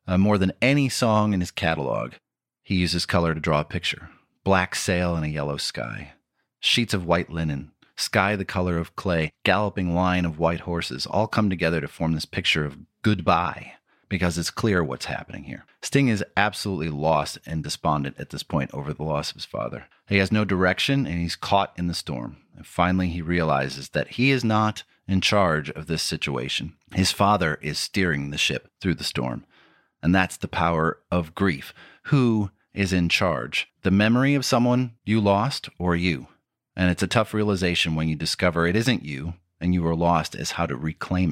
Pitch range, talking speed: 80-100 Hz, 195 wpm